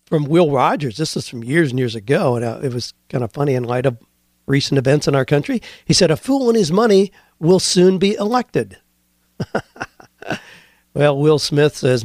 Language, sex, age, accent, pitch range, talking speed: English, male, 50-69, American, 120-155 Hz, 195 wpm